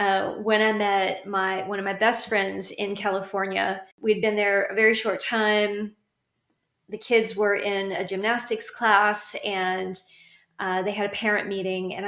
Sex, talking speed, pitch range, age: female, 170 wpm, 195-235 Hz, 30-49